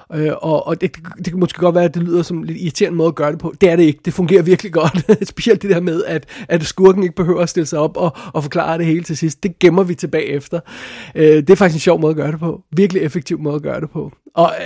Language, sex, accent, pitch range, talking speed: Danish, male, native, 150-175 Hz, 290 wpm